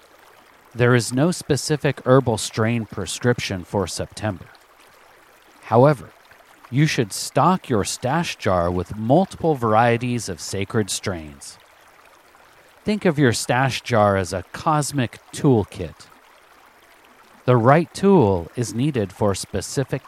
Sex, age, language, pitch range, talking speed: male, 40-59, English, 105-145 Hz, 115 wpm